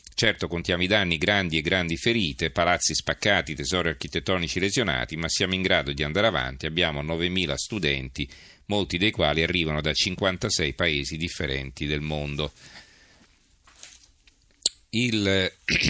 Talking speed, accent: 130 wpm, native